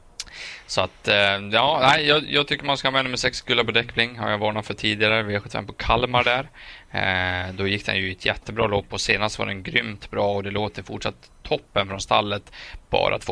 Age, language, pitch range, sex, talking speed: 20-39, Swedish, 95-110 Hz, male, 220 wpm